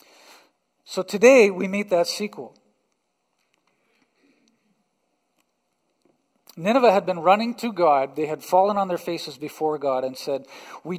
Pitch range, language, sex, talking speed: 160-210 Hz, English, male, 125 wpm